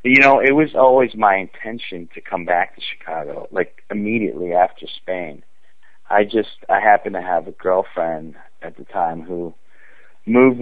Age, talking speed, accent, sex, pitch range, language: 40-59, 165 wpm, American, male, 85-105 Hz, English